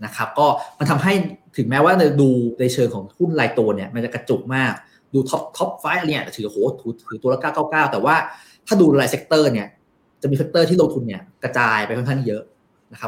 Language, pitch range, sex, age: Thai, 120-150 Hz, male, 20-39